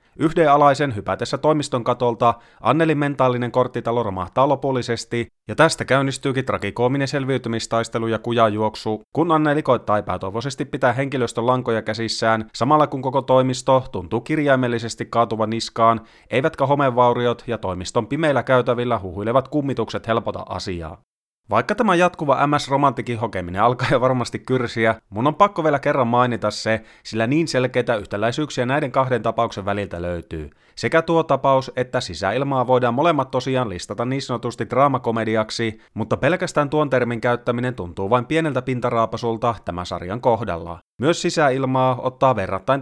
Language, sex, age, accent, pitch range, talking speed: Finnish, male, 30-49, native, 110-135 Hz, 135 wpm